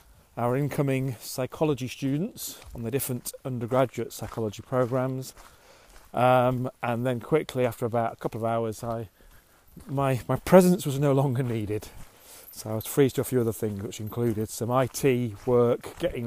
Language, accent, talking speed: English, British, 160 wpm